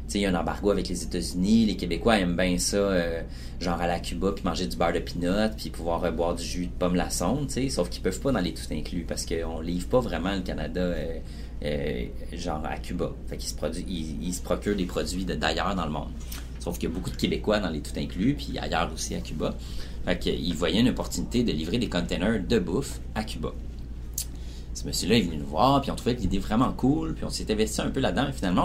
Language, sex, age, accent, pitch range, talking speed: French, male, 30-49, Canadian, 65-90 Hz, 245 wpm